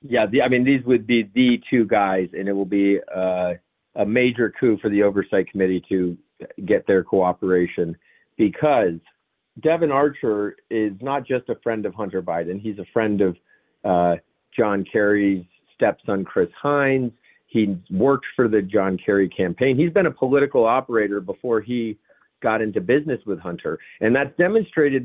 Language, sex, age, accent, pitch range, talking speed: English, male, 40-59, American, 105-140 Hz, 165 wpm